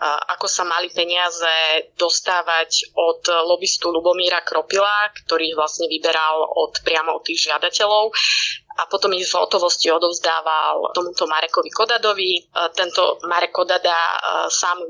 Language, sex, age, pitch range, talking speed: Slovak, female, 20-39, 165-200 Hz, 130 wpm